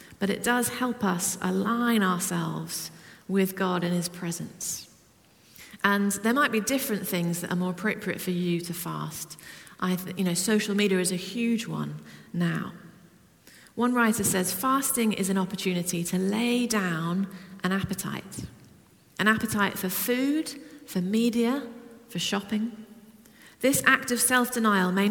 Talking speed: 145 wpm